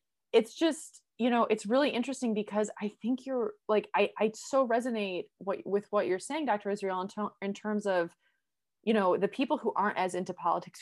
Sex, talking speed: female, 205 wpm